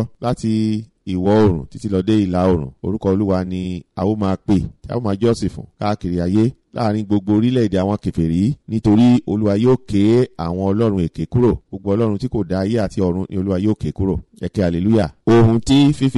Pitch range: 95-120 Hz